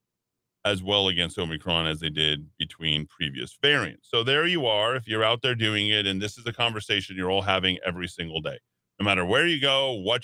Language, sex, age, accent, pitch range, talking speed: English, male, 40-59, American, 105-140 Hz, 215 wpm